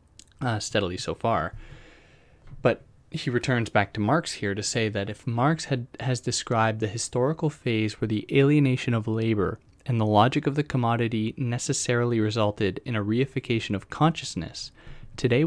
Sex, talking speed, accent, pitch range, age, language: male, 160 wpm, American, 95-125 Hz, 20-39, English